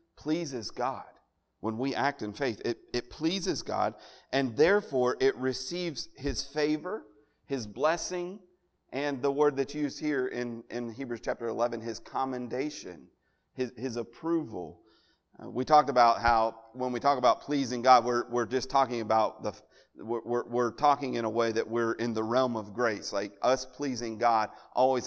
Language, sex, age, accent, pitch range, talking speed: English, male, 40-59, American, 120-155 Hz, 165 wpm